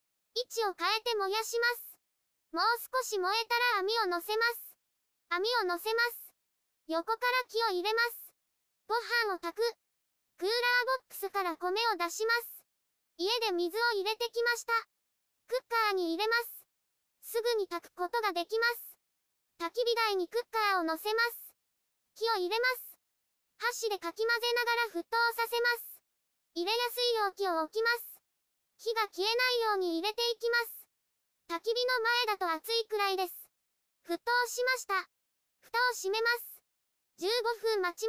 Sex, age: male, 20-39